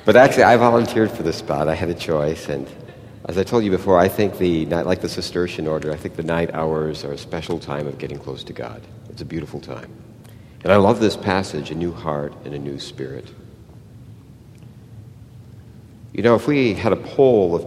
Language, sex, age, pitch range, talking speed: English, male, 60-79, 85-115 Hz, 215 wpm